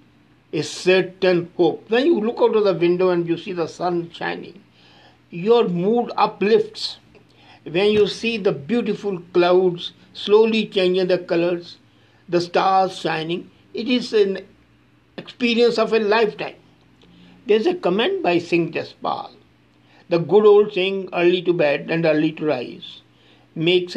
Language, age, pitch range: English, 60-79, 155-210 Hz